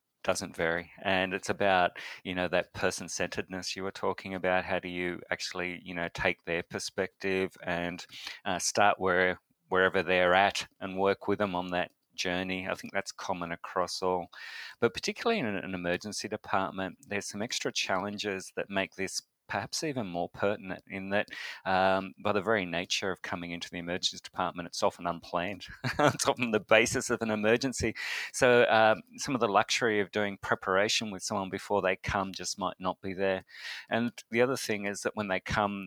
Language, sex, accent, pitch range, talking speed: English, male, Australian, 90-105 Hz, 185 wpm